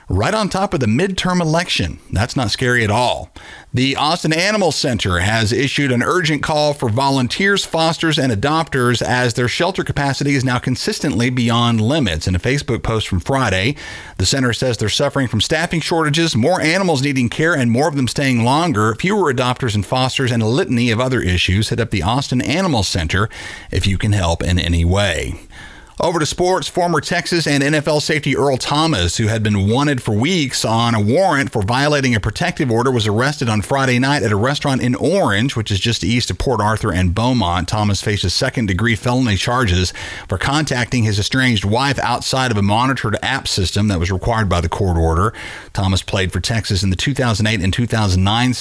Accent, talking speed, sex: American, 195 wpm, male